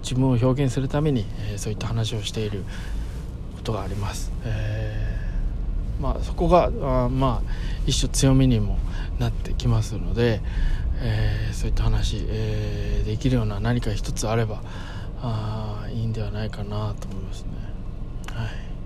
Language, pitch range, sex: Japanese, 95-120 Hz, male